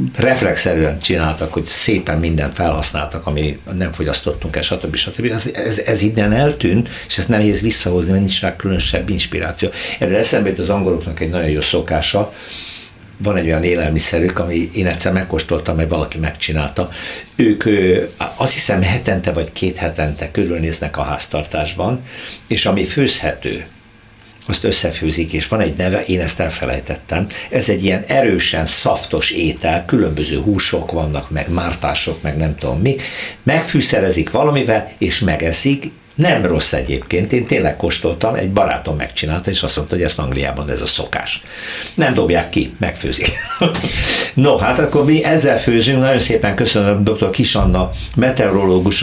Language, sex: Hungarian, male